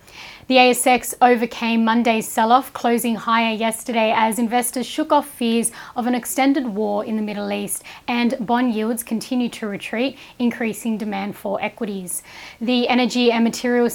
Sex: female